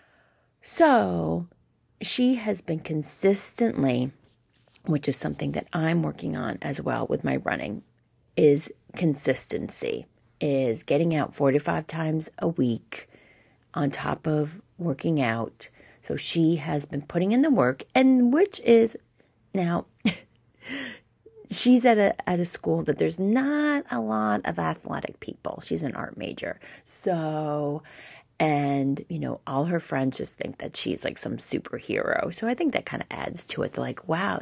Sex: female